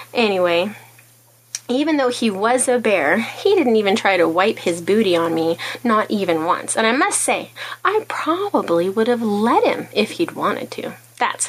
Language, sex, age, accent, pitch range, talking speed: English, female, 30-49, American, 205-290 Hz, 185 wpm